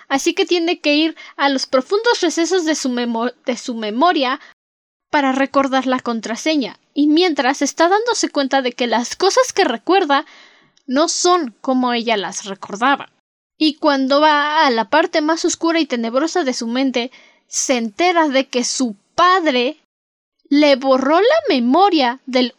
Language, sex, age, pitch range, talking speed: Spanish, female, 10-29, 255-335 Hz, 155 wpm